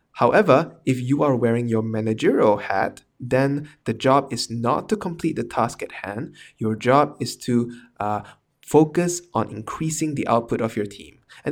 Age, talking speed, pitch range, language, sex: 20-39, 165 wpm, 115-140 Hz, English, male